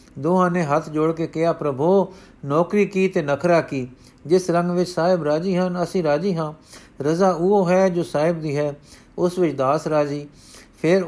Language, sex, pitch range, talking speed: Punjabi, male, 140-175 Hz, 175 wpm